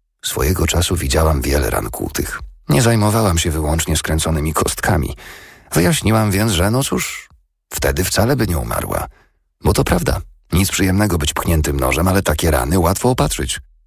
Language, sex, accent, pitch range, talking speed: Polish, male, native, 75-95 Hz, 150 wpm